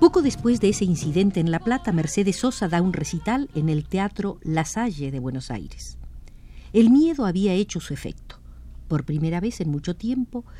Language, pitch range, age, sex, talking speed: Spanish, 145-195 Hz, 50-69, female, 185 wpm